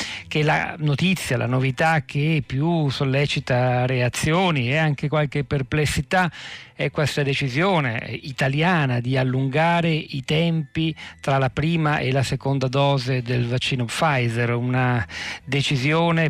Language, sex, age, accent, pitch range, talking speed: Italian, male, 40-59, native, 125-150 Hz, 120 wpm